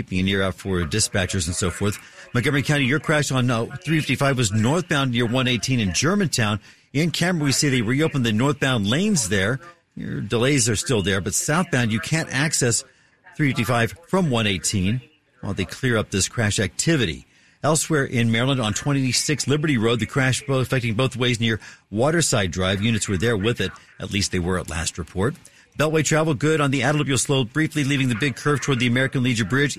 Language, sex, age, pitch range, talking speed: English, male, 50-69, 110-140 Hz, 190 wpm